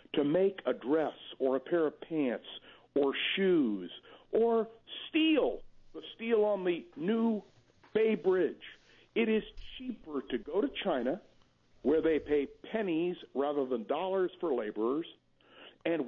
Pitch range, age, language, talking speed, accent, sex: 145-225 Hz, 60-79, English, 140 wpm, American, male